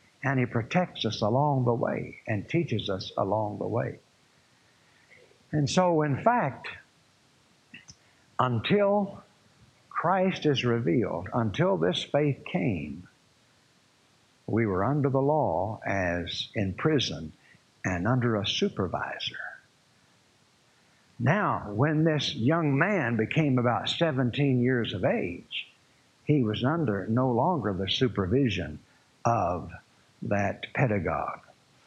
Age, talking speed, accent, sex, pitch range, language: 60-79, 110 wpm, American, male, 120-175 Hz, English